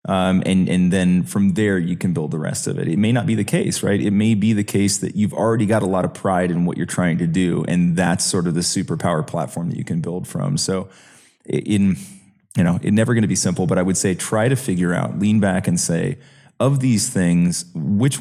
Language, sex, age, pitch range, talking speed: English, male, 30-49, 90-110 Hz, 255 wpm